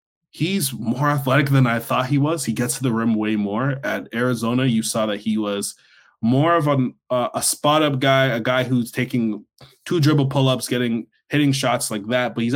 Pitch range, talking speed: 110-135 Hz, 220 wpm